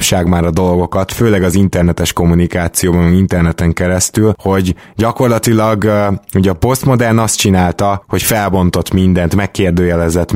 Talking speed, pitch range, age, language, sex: 115 wpm, 90-105 Hz, 20-39, Hungarian, male